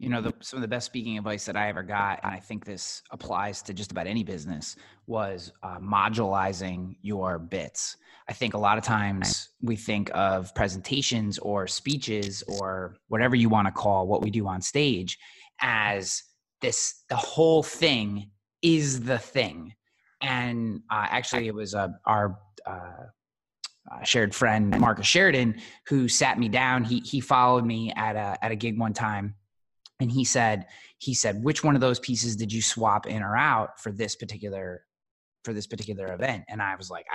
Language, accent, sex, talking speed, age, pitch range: English, American, male, 185 wpm, 20-39, 105-125 Hz